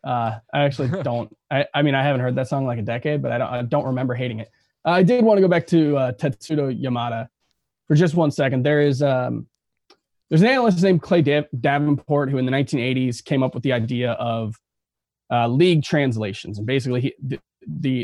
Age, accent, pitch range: 20-39, American, 120-160 Hz